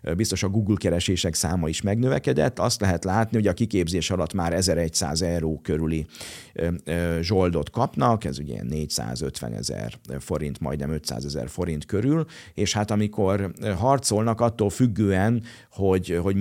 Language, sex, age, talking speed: Hungarian, male, 50-69, 140 wpm